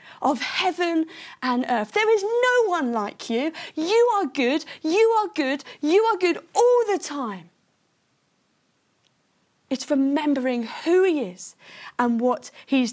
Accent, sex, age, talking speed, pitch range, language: British, female, 30-49, 140 wpm, 240-365 Hz, English